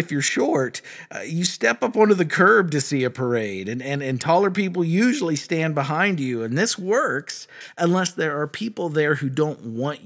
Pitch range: 125-175 Hz